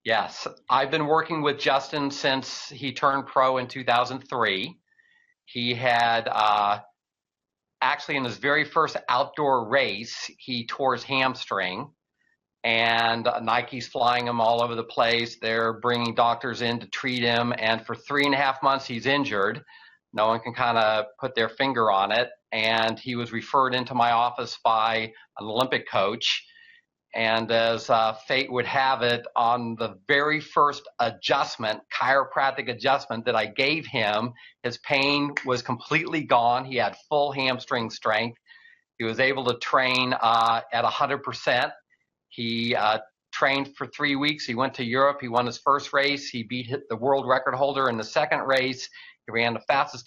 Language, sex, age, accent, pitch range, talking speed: English, male, 50-69, American, 115-135 Hz, 160 wpm